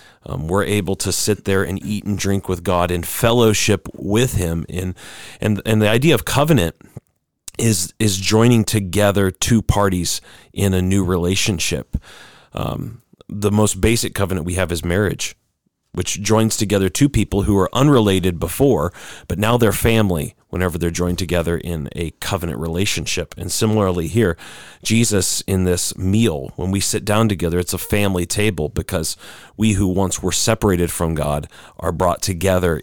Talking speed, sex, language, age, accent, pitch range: 165 wpm, male, English, 40-59, American, 85-105 Hz